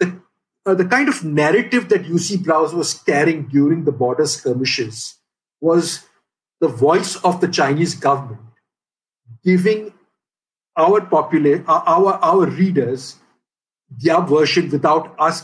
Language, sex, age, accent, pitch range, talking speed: English, male, 50-69, Indian, 140-190 Hz, 125 wpm